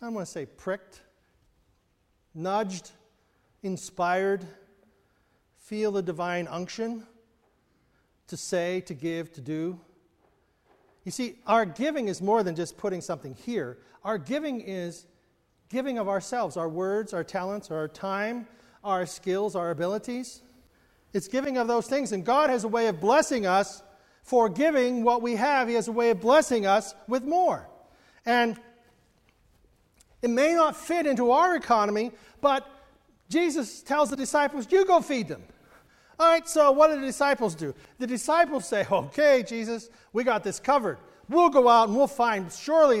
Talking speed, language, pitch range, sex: 155 wpm, English, 185-255 Hz, male